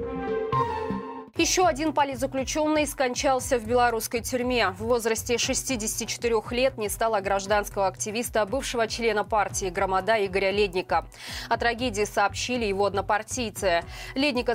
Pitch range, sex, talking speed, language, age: 195-245 Hz, female, 110 wpm, Russian, 20-39